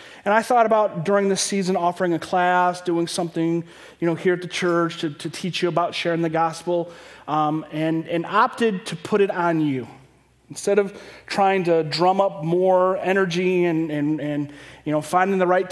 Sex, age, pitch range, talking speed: male, 30-49, 165-195 Hz, 195 wpm